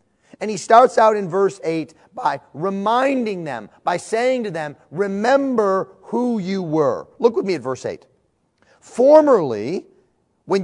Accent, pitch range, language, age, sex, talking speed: American, 165-230 Hz, English, 40-59, male, 145 wpm